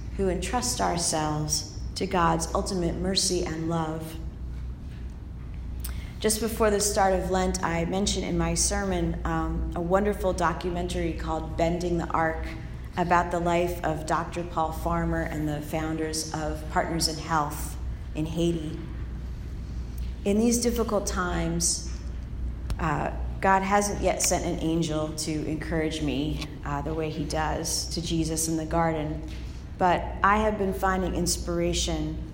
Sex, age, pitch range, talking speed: female, 30-49, 155-180 Hz, 135 wpm